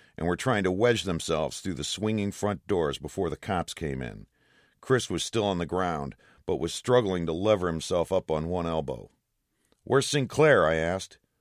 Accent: American